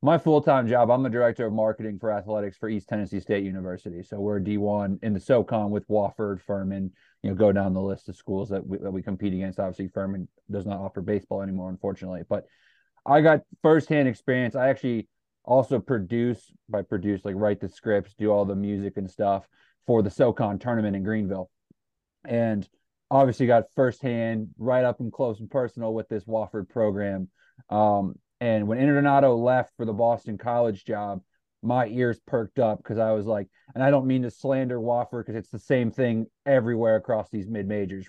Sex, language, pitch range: male, English, 100-125 Hz